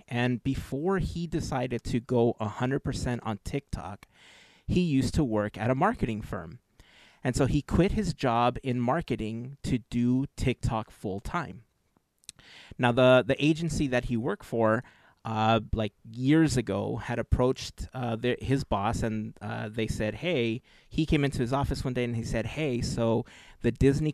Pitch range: 110-135 Hz